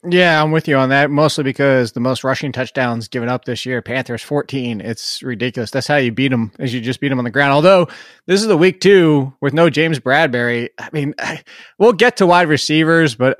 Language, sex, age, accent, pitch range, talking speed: English, male, 20-39, American, 130-165 Hz, 235 wpm